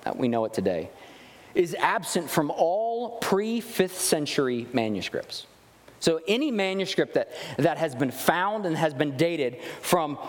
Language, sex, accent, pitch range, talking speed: English, male, American, 155-215 Hz, 135 wpm